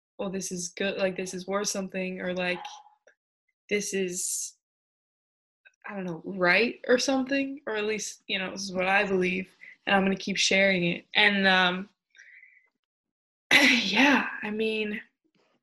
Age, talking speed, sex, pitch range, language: 20-39, 155 wpm, female, 190-245 Hz, English